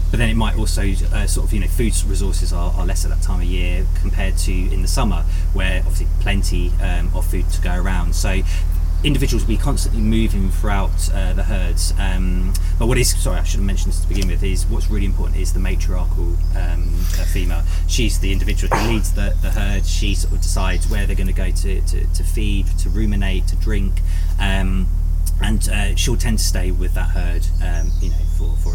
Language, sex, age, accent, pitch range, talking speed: English, male, 20-39, British, 75-90 Hz, 225 wpm